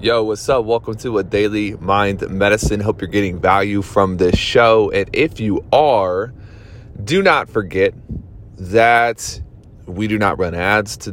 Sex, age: male, 20-39